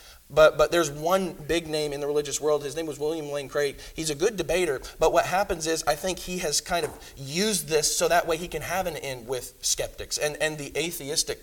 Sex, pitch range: male, 145-180 Hz